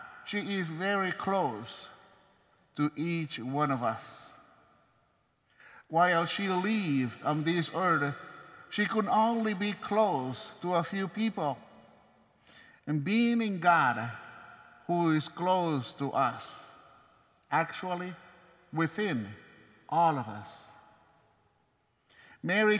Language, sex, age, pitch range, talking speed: English, male, 50-69, 140-205 Hz, 105 wpm